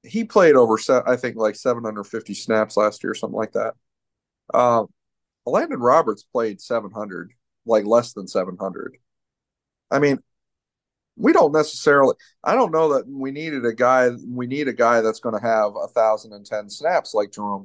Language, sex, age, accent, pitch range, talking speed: English, male, 40-59, American, 105-130 Hz, 165 wpm